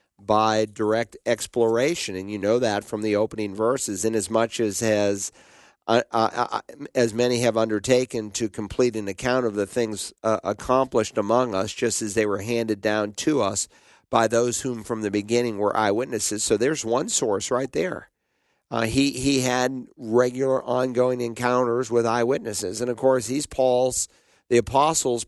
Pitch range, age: 110-125 Hz, 50-69